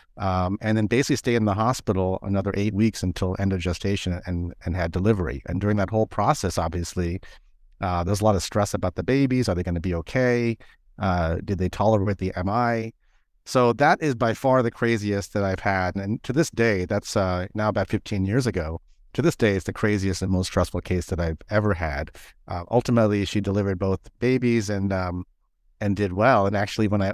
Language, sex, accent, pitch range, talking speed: English, male, American, 90-110 Hz, 215 wpm